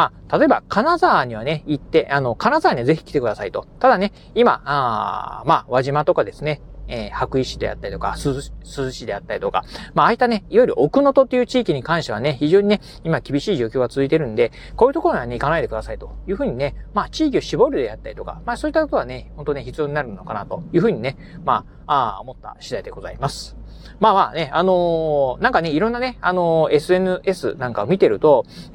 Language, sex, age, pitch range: Japanese, male, 30-49, 140-220 Hz